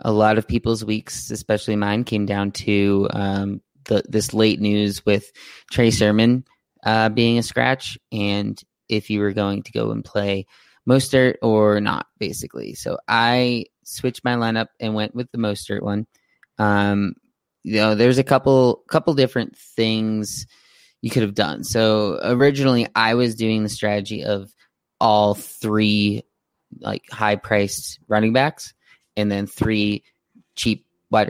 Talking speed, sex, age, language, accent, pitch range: 150 wpm, male, 20-39, English, American, 105-115 Hz